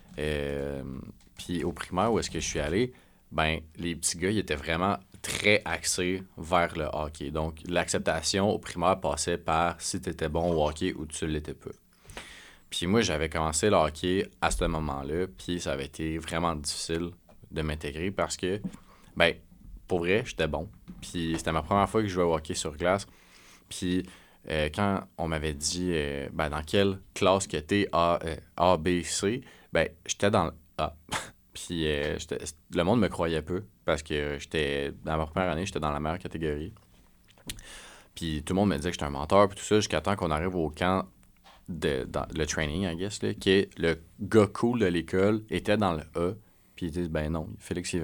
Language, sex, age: French, male, 30-49